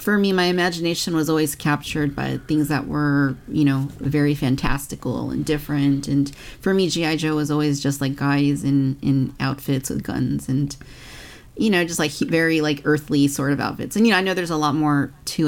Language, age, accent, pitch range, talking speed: English, 30-49, American, 140-160 Hz, 205 wpm